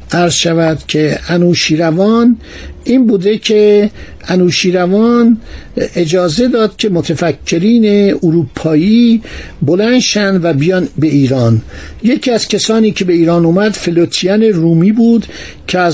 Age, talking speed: 60-79, 115 wpm